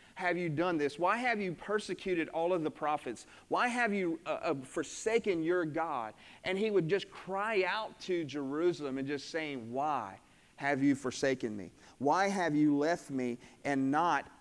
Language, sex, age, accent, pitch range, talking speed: English, male, 40-59, American, 140-175 Hz, 180 wpm